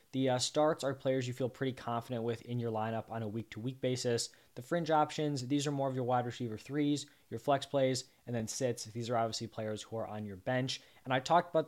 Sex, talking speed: male, 240 wpm